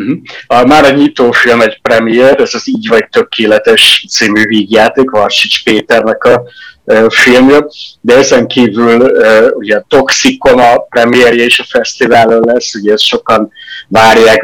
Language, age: Hungarian, 30-49